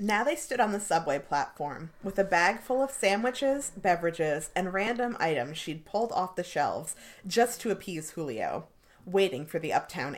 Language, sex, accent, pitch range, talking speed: English, female, American, 170-240 Hz, 175 wpm